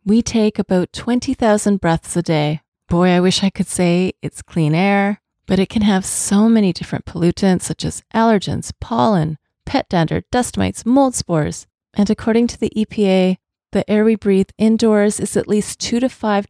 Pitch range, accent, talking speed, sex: 175-215 Hz, American, 180 wpm, female